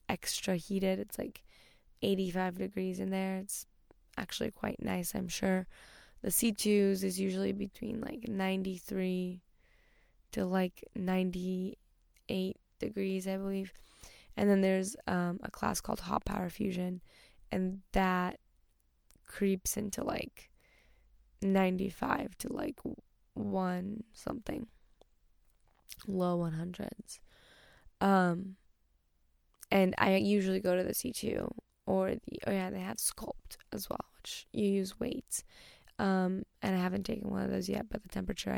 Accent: American